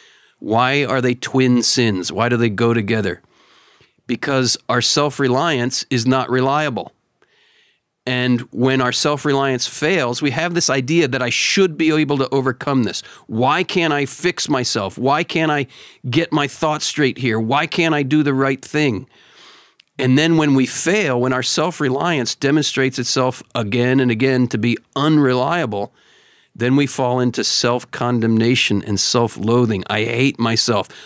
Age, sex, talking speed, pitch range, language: 50-69, male, 155 wpm, 120-140 Hz, English